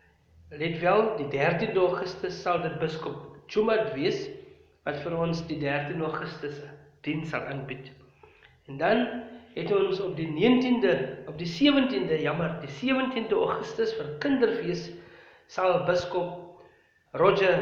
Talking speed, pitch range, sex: 125 wpm, 140-185 Hz, male